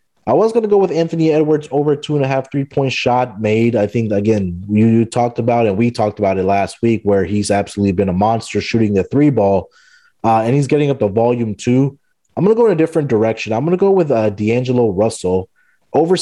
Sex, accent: male, American